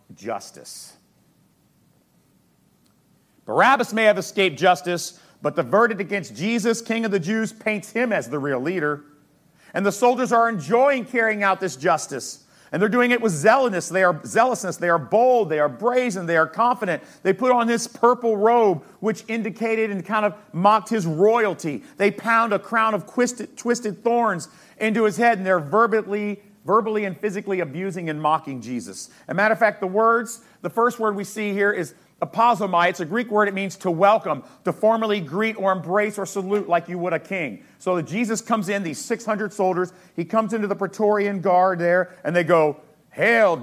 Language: English